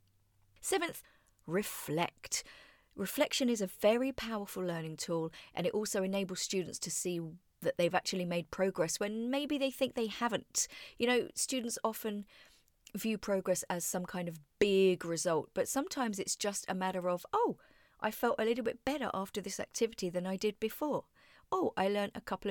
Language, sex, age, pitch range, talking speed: English, female, 40-59, 180-235 Hz, 175 wpm